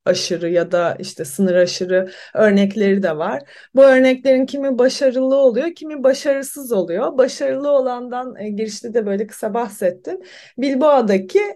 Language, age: Turkish, 30-49